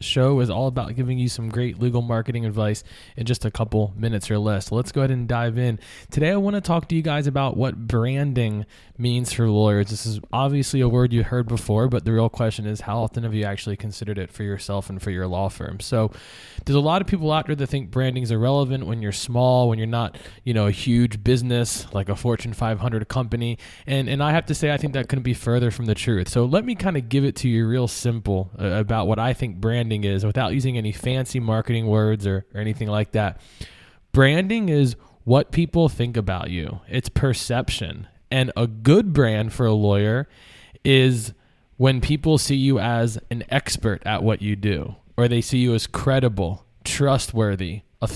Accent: American